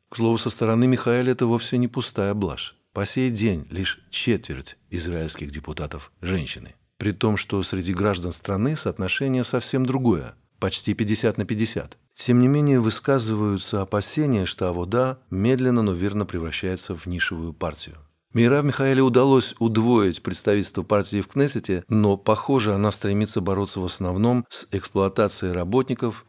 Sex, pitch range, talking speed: male, 95-115 Hz, 150 wpm